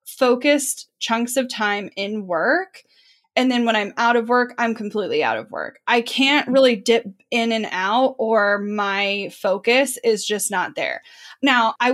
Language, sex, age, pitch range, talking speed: English, female, 10-29, 210-265 Hz, 170 wpm